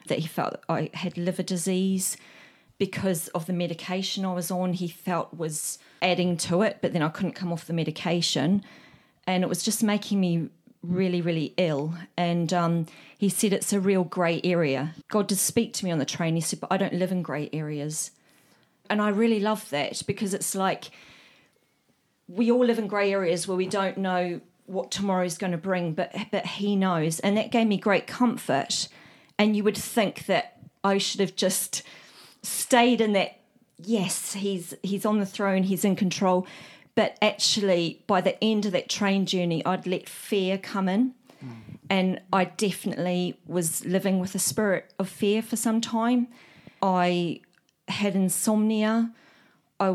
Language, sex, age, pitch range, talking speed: English, female, 40-59, 175-205 Hz, 180 wpm